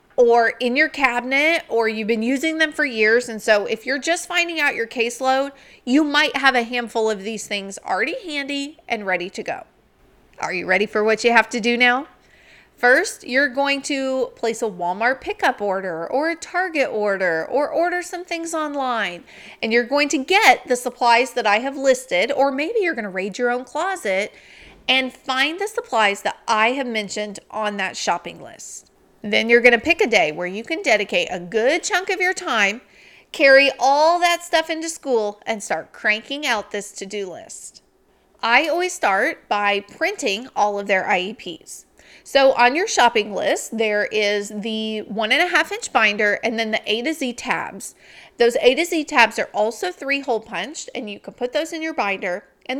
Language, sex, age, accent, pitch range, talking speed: English, female, 30-49, American, 215-305 Hz, 195 wpm